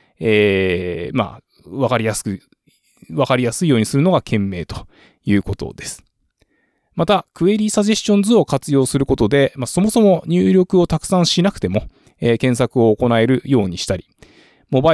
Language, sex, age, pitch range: Japanese, male, 20-39, 110-165 Hz